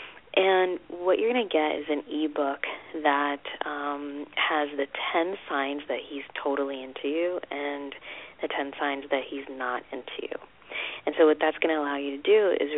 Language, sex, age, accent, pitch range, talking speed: English, female, 30-49, American, 140-165 Hz, 190 wpm